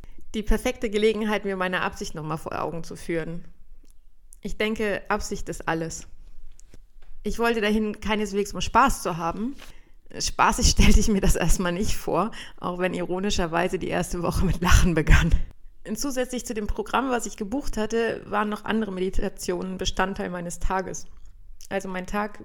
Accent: German